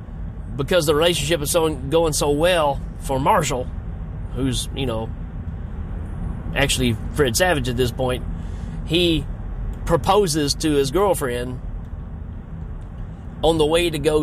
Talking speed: 120 wpm